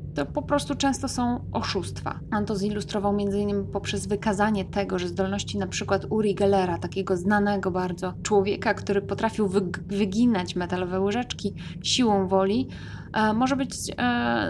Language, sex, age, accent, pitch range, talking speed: Polish, female, 20-39, native, 185-215 Hz, 135 wpm